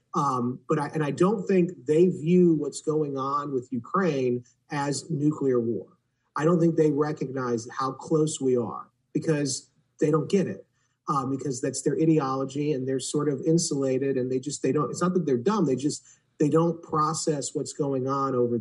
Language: English